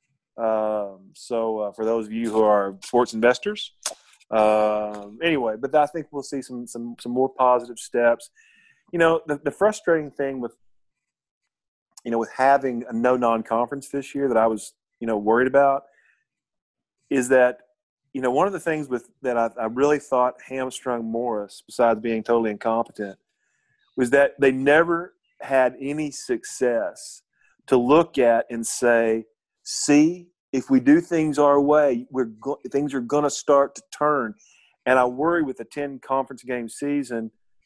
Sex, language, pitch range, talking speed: male, English, 115-150 Hz, 165 wpm